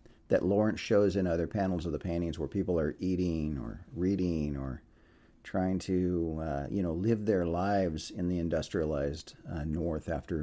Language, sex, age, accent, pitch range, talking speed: English, male, 50-69, American, 85-110 Hz, 175 wpm